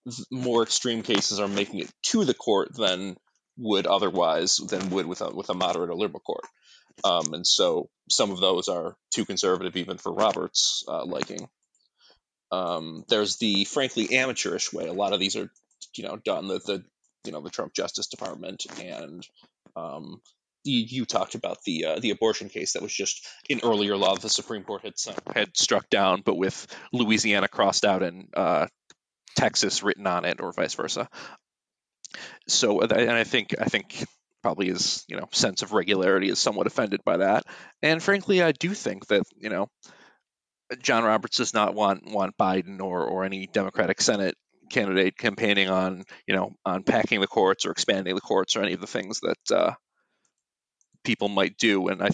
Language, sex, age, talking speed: English, male, 20-39, 180 wpm